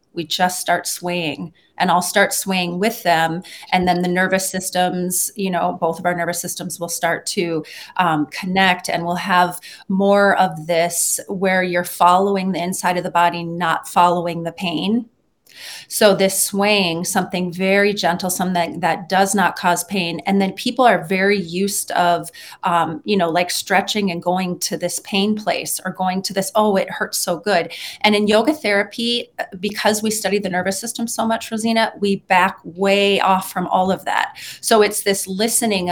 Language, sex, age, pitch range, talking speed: English, female, 30-49, 175-200 Hz, 180 wpm